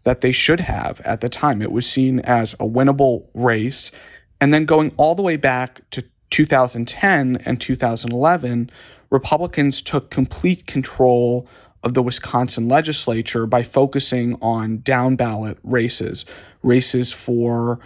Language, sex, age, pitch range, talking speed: English, male, 40-59, 115-130 Hz, 140 wpm